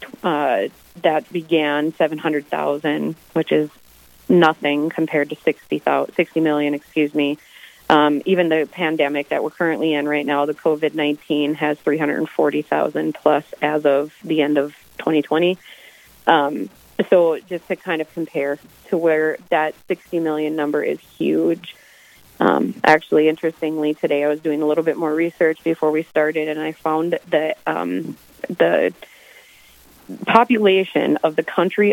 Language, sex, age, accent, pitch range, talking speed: English, female, 30-49, American, 145-165 Hz, 140 wpm